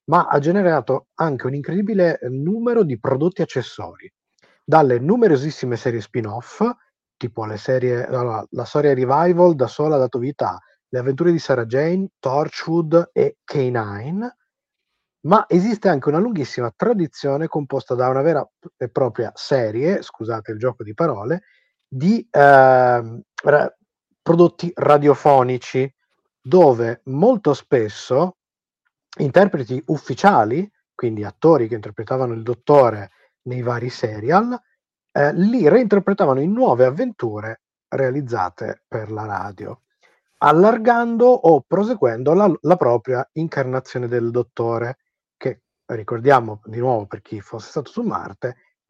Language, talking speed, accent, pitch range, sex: Italian, 125 wpm, native, 125-180 Hz, male